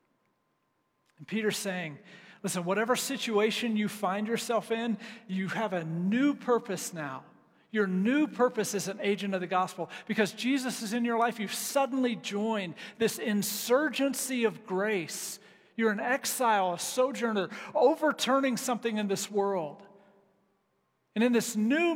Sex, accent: male, American